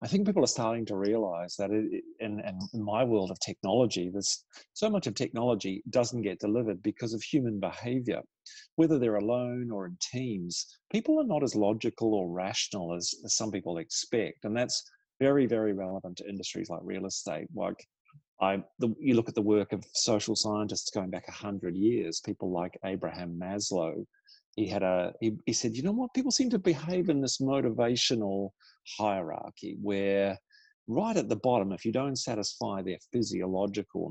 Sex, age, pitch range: male, 40-59, 95-120 Hz